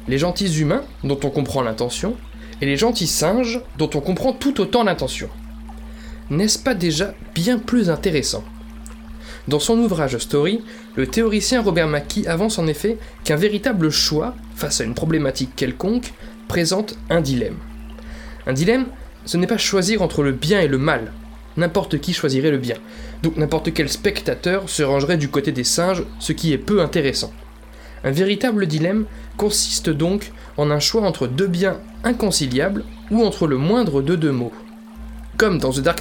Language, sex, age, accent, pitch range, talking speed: French, male, 20-39, French, 145-225 Hz, 165 wpm